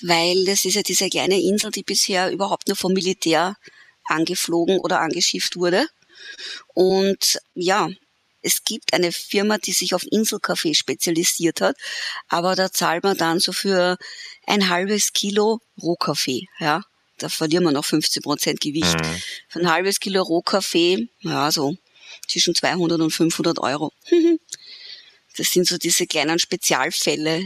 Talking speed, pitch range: 145 wpm, 165-200 Hz